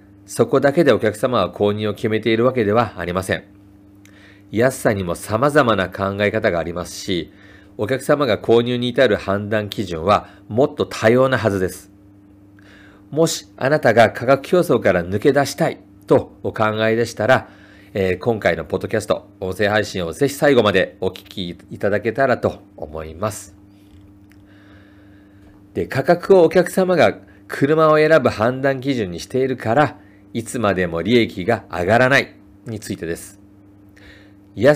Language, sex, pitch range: Japanese, male, 100-125 Hz